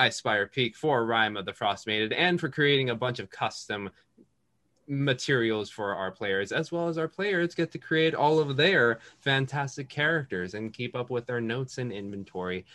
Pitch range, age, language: 105-160 Hz, 20-39, English